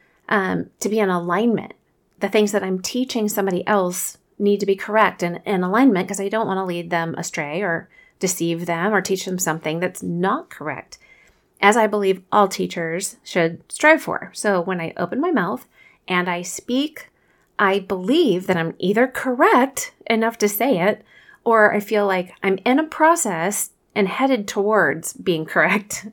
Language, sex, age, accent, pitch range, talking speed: English, female, 30-49, American, 180-220 Hz, 175 wpm